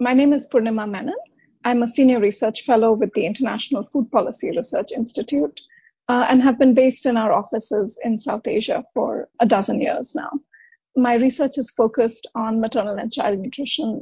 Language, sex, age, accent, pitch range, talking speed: English, female, 30-49, Indian, 220-265 Hz, 180 wpm